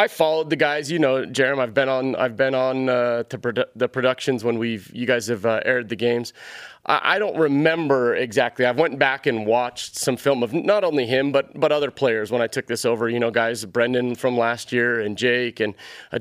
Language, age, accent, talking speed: English, 30-49, American, 235 wpm